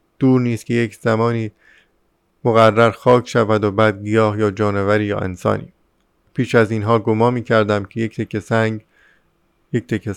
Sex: male